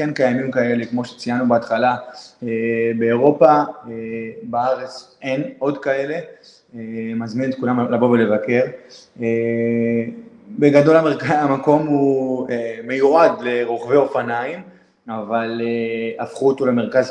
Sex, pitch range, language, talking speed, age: male, 115-135 Hz, Hebrew, 95 wpm, 20-39